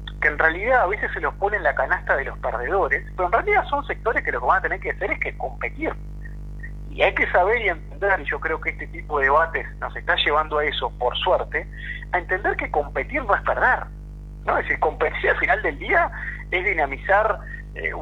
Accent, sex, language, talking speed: Argentinian, male, Spanish, 230 wpm